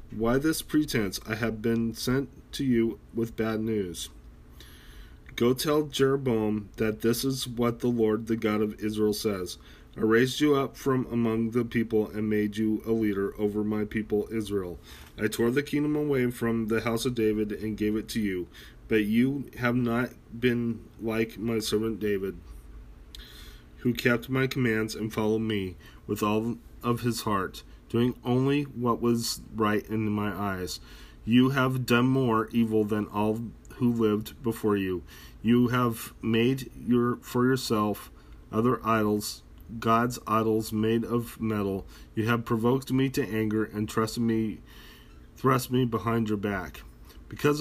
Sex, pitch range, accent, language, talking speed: male, 105-120 Hz, American, English, 155 wpm